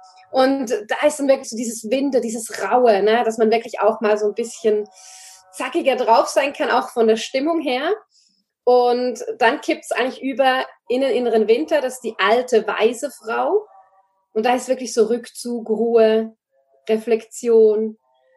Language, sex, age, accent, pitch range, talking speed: German, female, 30-49, German, 225-300 Hz, 170 wpm